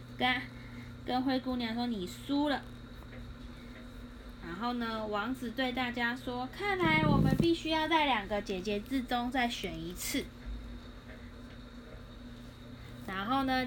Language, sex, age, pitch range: Chinese, female, 10-29, 195-280 Hz